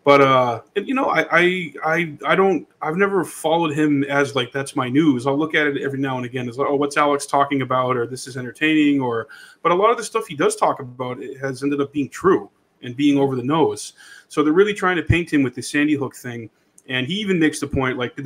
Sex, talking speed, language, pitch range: male, 260 wpm, English, 135-160 Hz